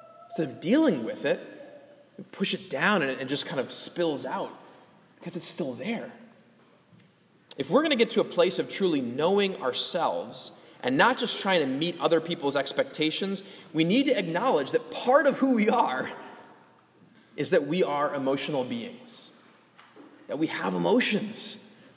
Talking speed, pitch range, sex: 165 wpm, 165-245 Hz, male